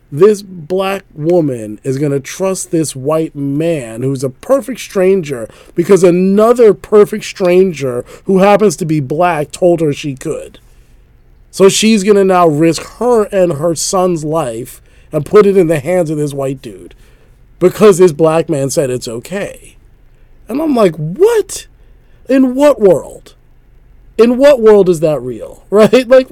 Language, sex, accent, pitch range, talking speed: English, male, American, 130-190 Hz, 160 wpm